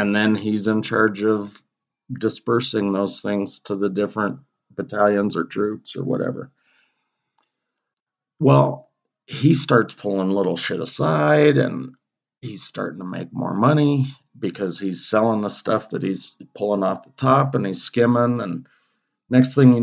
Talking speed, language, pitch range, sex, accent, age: 150 wpm, English, 105-135 Hz, male, American, 50-69